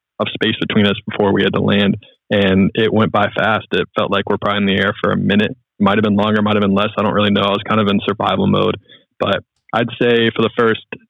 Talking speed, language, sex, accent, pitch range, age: 260 wpm, English, male, American, 105-115 Hz, 20-39